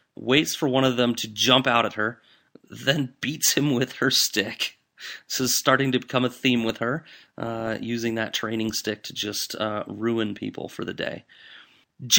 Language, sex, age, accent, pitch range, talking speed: English, male, 30-49, American, 110-135 Hz, 190 wpm